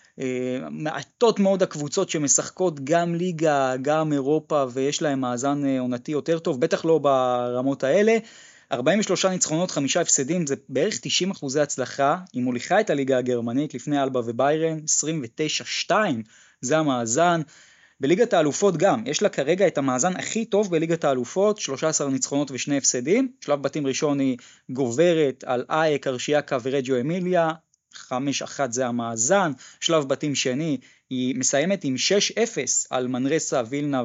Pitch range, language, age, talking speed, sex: 135-195 Hz, Hebrew, 20-39, 140 wpm, male